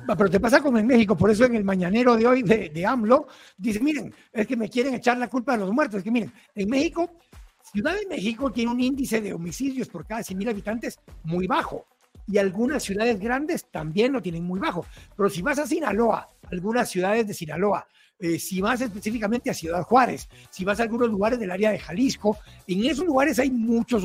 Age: 60-79